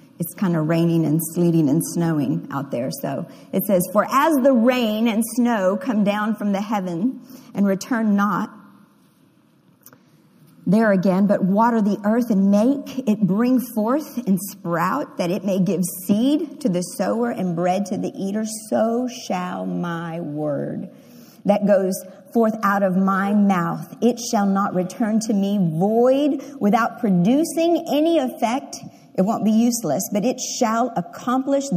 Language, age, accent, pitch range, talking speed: English, 50-69, American, 180-235 Hz, 155 wpm